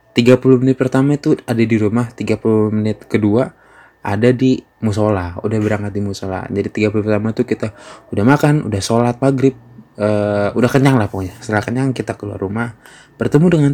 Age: 20-39